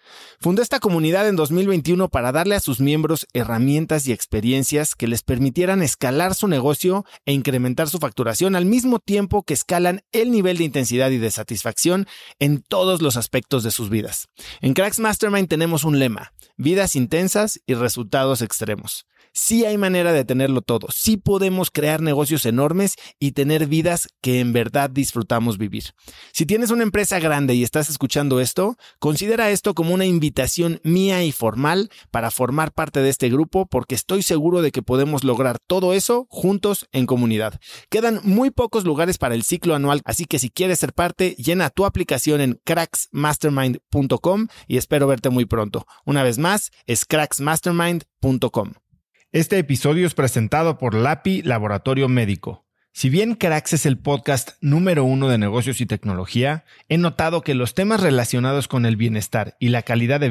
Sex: male